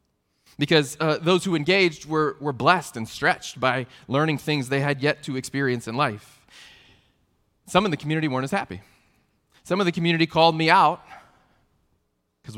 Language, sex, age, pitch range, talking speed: English, male, 30-49, 100-155 Hz, 165 wpm